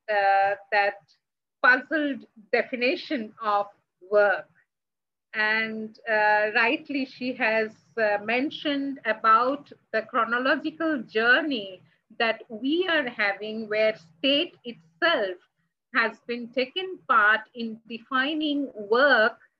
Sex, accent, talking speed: female, Indian, 95 wpm